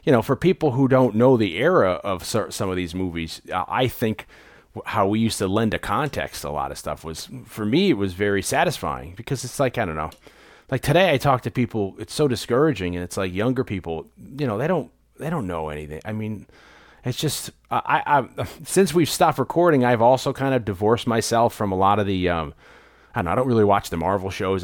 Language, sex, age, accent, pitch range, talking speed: English, male, 30-49, American, 100-130 Hz, 230 wpm